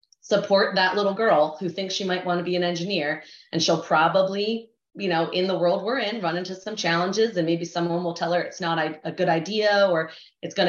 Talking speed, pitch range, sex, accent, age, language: 230 wpm, 160-195 Hz, female, American, 30-49, English